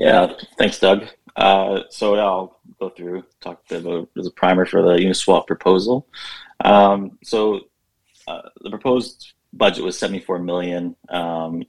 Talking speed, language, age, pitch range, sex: 145 wpm, English, 20-39, 85-95 Hz, male